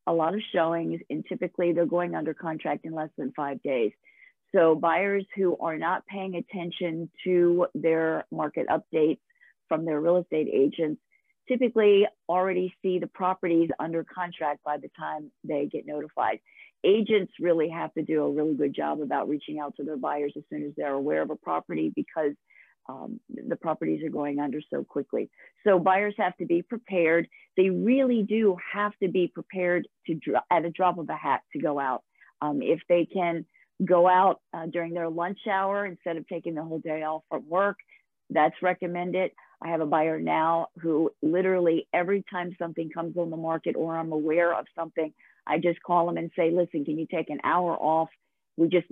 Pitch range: 160-185 Hz